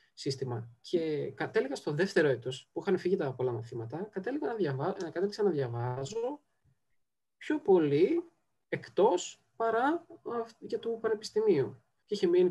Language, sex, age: Greek, male, 20-39